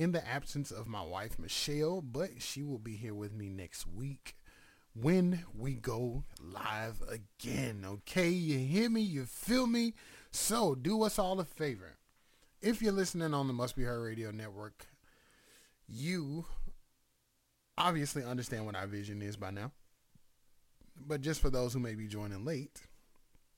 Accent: American